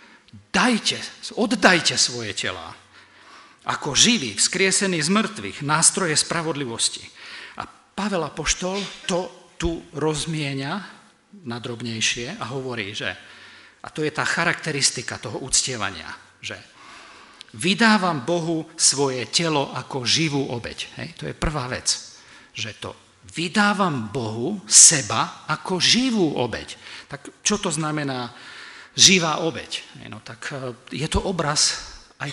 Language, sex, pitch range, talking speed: Slovak, male, 130-195 Hz, 115 wpm